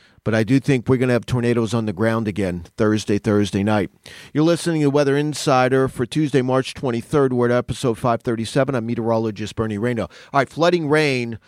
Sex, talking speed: male, 195 wpm